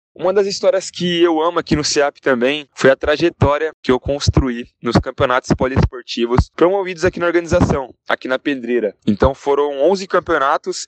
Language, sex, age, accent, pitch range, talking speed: Portuguese, male, 10-29, Brazilian, 130-175 Hz, 165 wpm